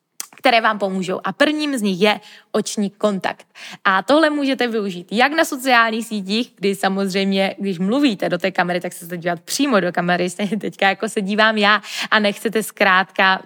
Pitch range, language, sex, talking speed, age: 190-235 Hz, Czech, female, 185 wpm, 20-39